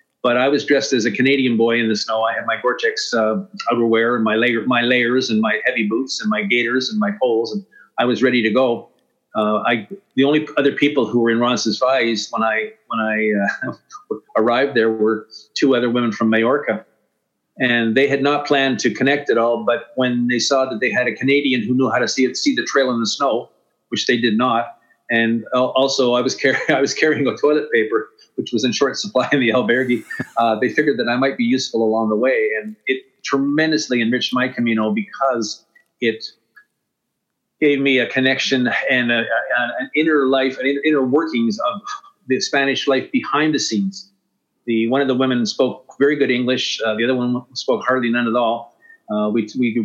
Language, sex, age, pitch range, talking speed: English, male, 50-69, 115-145 Hz, 210 wpm